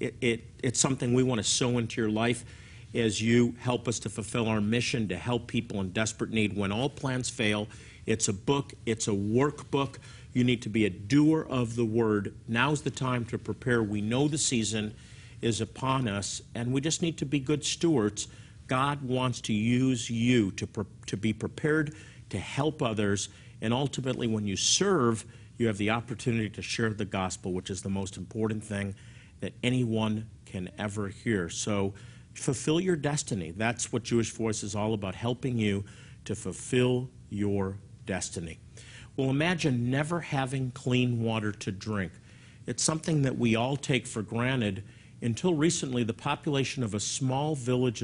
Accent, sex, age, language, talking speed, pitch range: American, male, 50-69, English, 175 wpm, 110-130 Hz